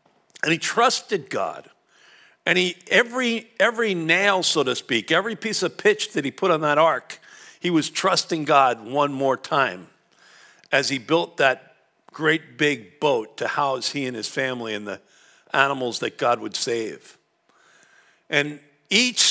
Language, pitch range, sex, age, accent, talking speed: English, 140-205 Hz, male, 50-69, American, 160 wpm